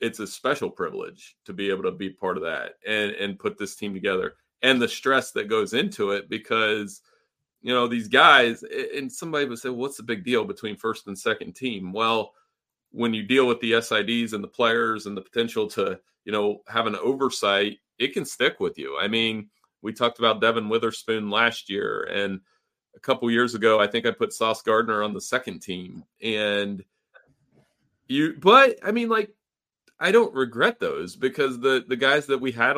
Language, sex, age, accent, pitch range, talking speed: English, male, 30-49, American, 110-140 Hz, 200 wpm